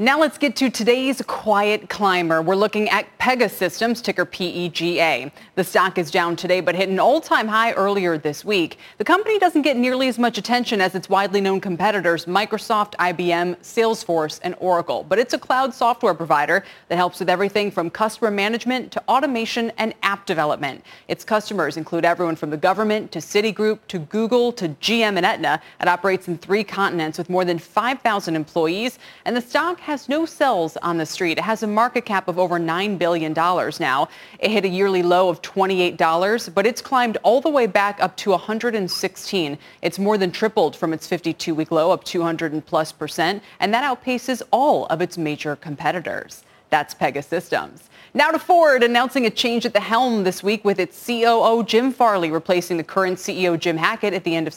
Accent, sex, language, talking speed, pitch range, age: American, female, English, 190 wpm, 175-230 Hz, 30-49